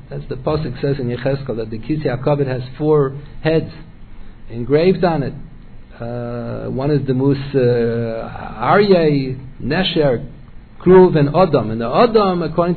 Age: 50-69